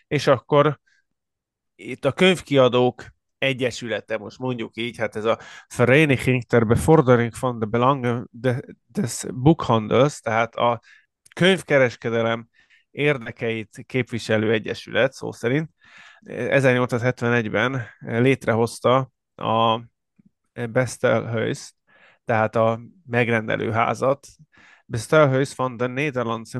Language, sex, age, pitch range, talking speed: Hungarian, male, 20-39, 115-135 Hz, 80 wpm